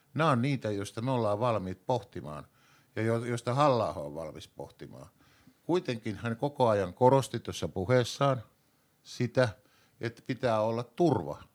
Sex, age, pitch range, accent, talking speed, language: male, 50-69, 95-130 Hz, native, 140 wpm, Finnish